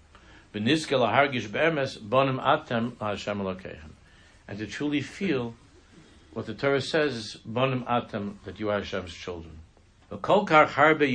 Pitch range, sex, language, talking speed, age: 95-120 Hz, male, English, 65 wpm, 60-79